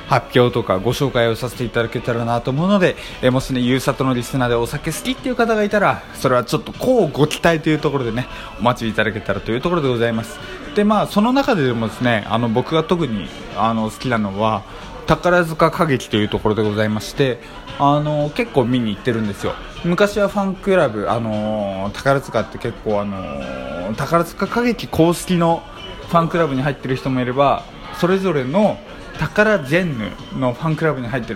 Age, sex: 20-39, male